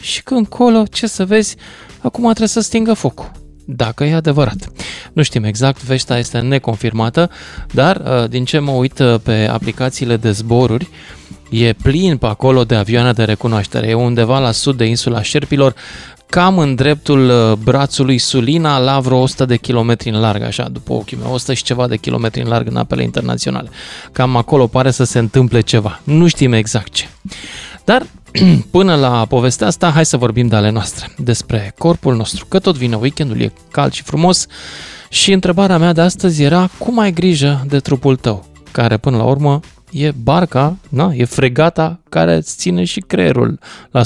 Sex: male